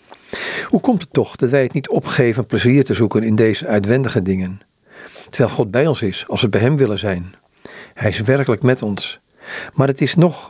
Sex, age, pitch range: male, 50-69, 110-140 Hz